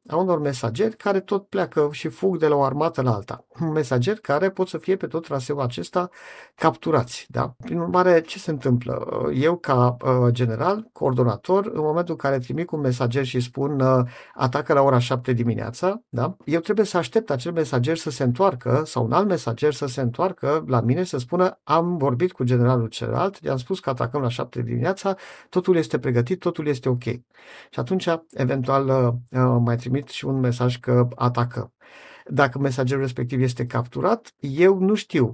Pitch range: 125-165 Hz